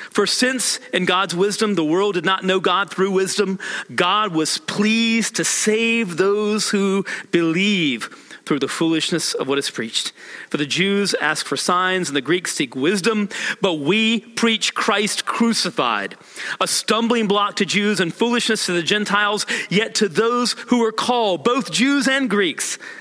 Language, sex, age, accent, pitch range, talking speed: English, male, 40-59, American, 165-220 Hz, 165 wpm